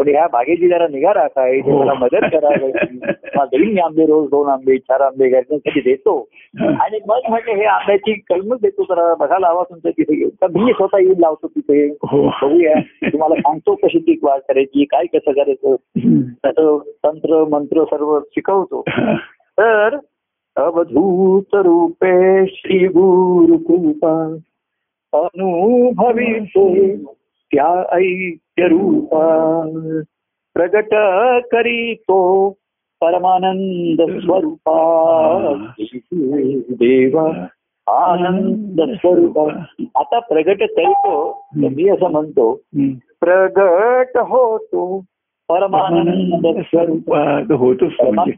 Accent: native